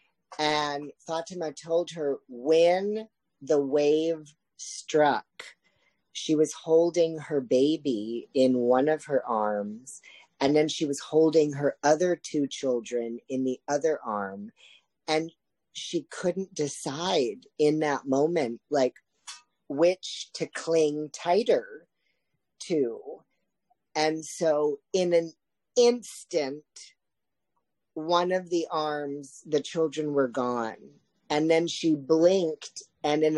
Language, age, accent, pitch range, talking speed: English, 40-59, American, 135-165 Hz, 115 wpm